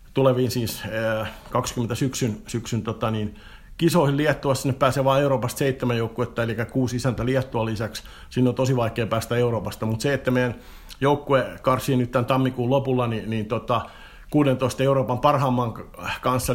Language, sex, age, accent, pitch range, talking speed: Finnish, male, 50-69, native, 120-135 Hz, 160 wpm